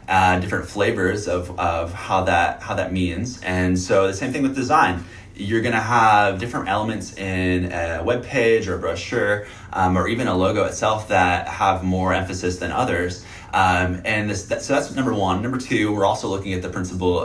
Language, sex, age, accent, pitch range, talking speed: English, male, 20-39, American, 90-105 Hz, 200 wpm